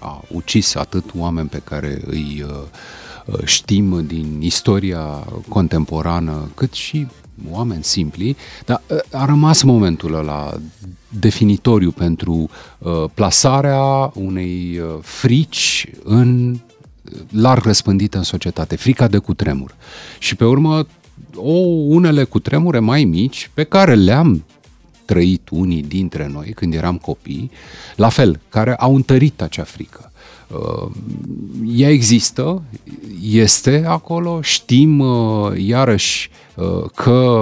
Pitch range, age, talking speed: 85-135 Hz, 40-59, 105 wpm